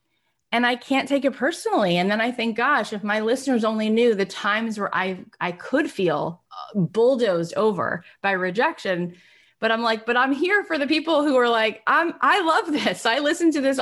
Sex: female